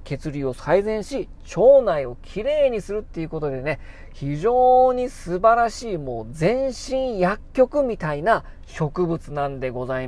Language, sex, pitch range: Japanese, male, 140-210 Hz